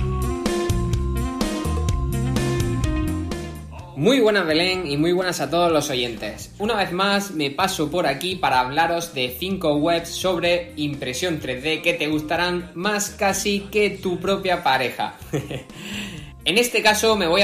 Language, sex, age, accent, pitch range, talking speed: Spanish, male, 20-39, Spanish, 130-185 Hz, 135 wpm